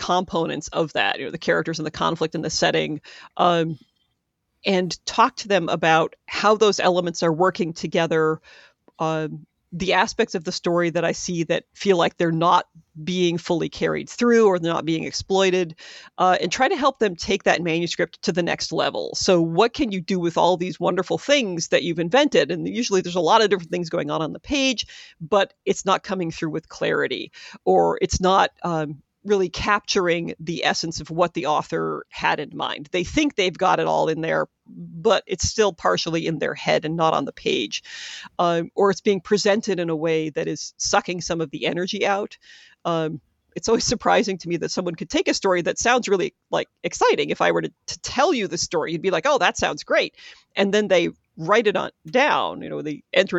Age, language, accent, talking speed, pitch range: 40-59, English, American, 210 wpm, 165-205 Hz